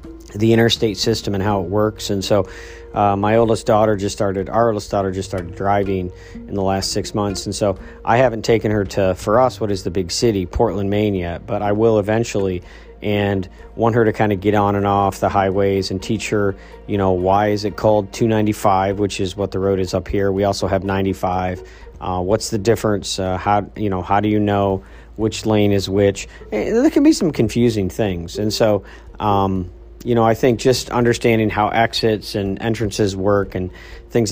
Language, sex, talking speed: English, male, 210 wpm